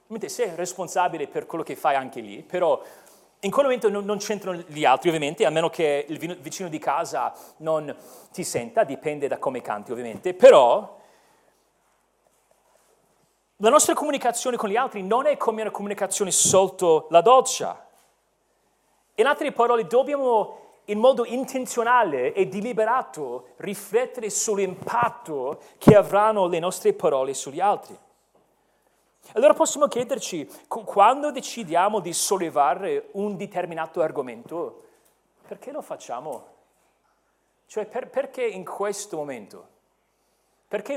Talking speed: 125 wpm